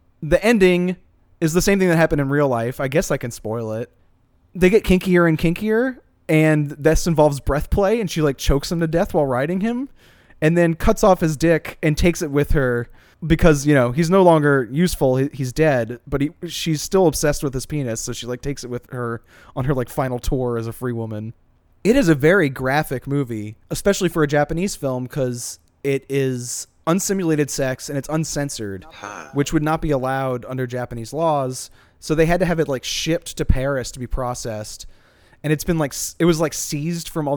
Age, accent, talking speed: 20-39, American, 210 wpm